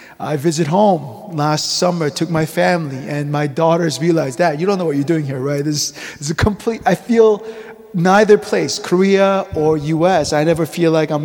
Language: English